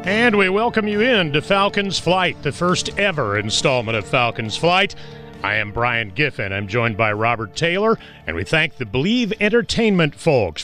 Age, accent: 40-59, American